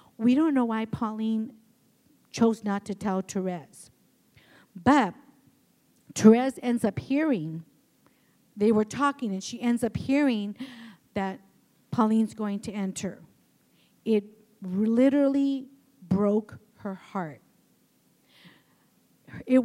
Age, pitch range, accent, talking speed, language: 50-69, 205-250 Hz, American, 105 wpm, English